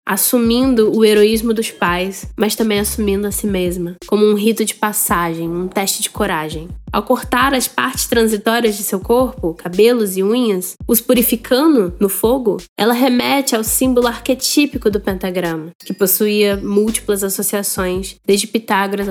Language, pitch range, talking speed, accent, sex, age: Portuguese, 200-250 Hz, 150 wpm, Brazilian, female, 10-29